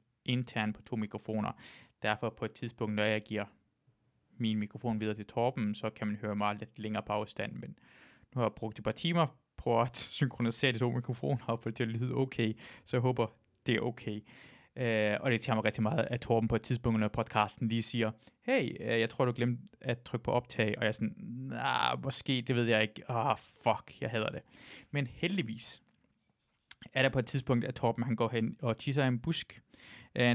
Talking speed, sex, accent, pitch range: 215 wpm, male, native, 110-130 Hz